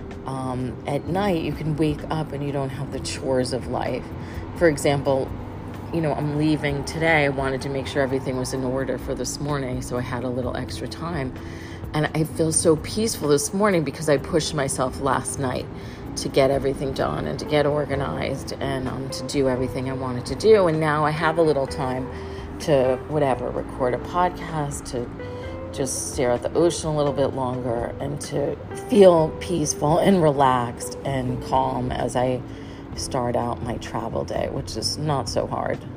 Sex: female